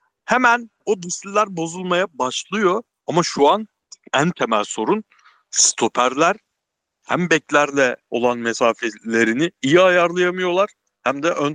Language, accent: Turkish, native